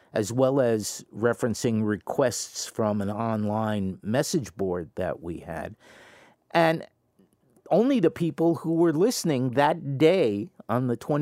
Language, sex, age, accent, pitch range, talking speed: English, male, 50-69, American, 105-140 Hz, 130 wpm